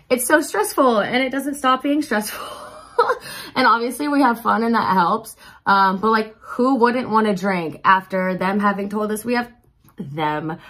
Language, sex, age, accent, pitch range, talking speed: English, female, 20-39, American, 185-245 Hz, 185 wpm